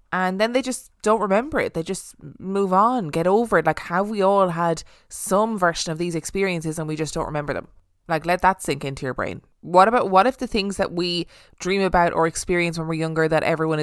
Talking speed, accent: 235 wpm, Irish